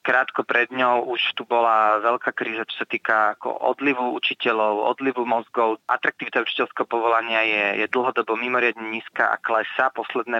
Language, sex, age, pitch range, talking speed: Slovak, male, 30-49, 115-125 Hz, 155 wpm